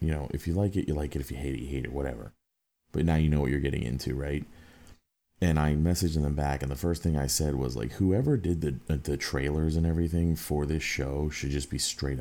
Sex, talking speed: male, 260 wpm